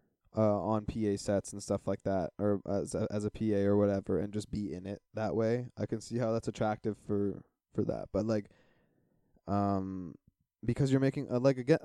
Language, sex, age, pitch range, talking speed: English, male, 20-39, 105-130 Hz, 205 wpm